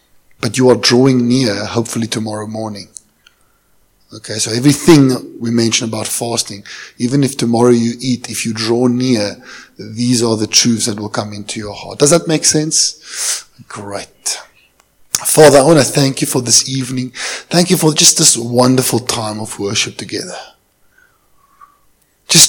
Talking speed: 155 wpm